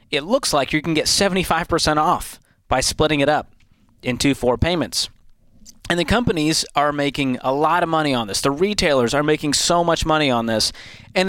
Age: 30-49